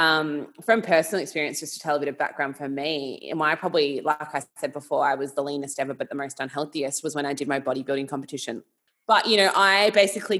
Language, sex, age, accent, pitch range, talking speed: English, female, 20-39, Australian, 145-170 Hz, 235 wpm